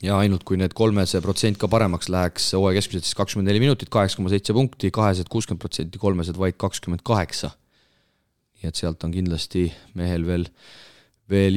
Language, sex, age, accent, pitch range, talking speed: English, male, 30-49, Finnish, 90-120 Hz, 145 wpm